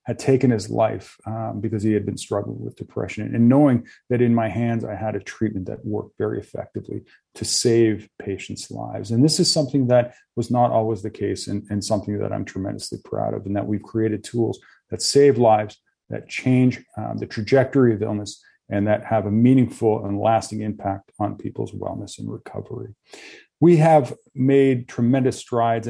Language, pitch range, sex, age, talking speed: English, 105-125 Hz, male, 40-59, 190 wpm